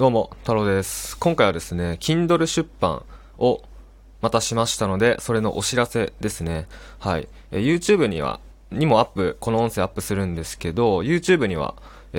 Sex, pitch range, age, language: male, 90-125 Hz, 20-39, Japanese